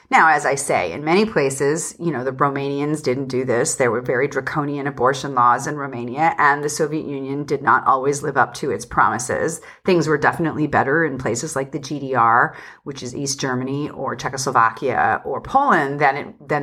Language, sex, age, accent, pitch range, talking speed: English, female, 40-59, American, 135-175 Hz, 195 wpm